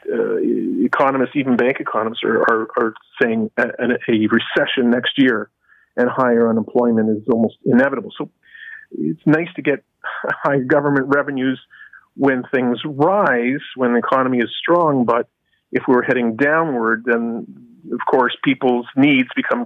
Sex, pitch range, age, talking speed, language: male, 120-150 Hz, 40-59, 145 wpm, English